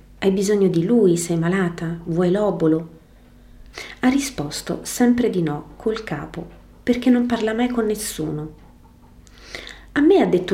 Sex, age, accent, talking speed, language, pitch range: female, 30-49, native, 140 wpm, Italian, 160-210 Hz